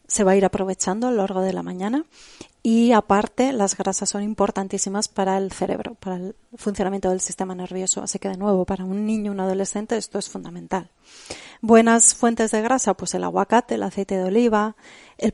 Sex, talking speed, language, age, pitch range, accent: female, 195 wpm, Spanish, 30-49, 190-225 Hz, Spanish